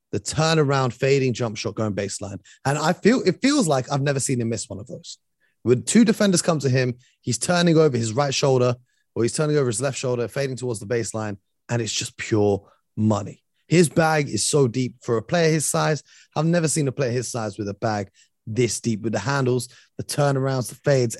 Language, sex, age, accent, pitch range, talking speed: English, male, 30-49, British, 115-150 Hz, 220 wpm